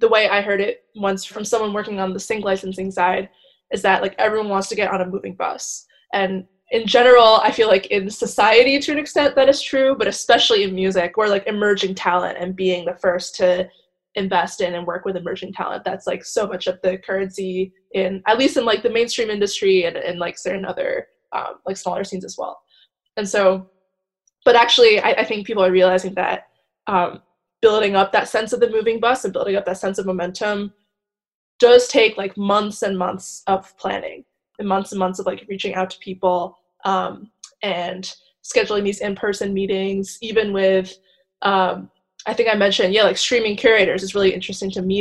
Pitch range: 185-220 Hz